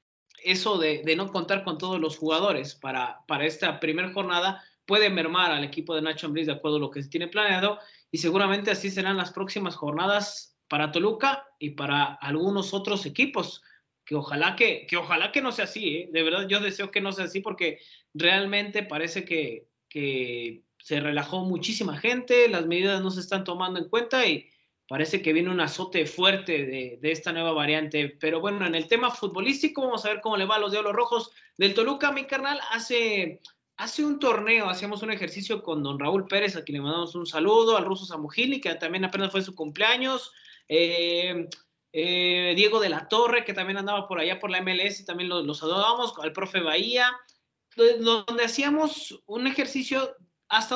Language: Spanish